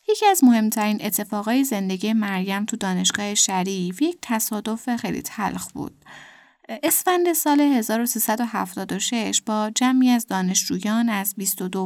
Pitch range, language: 195-250 Hz, Persian